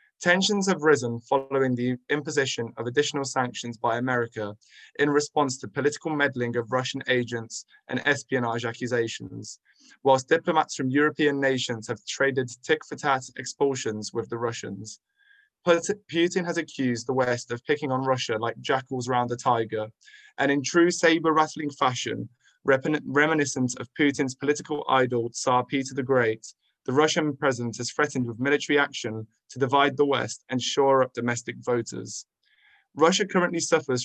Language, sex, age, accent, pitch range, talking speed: English, male, 20-39, British, 125-145 Hz, 150 wpm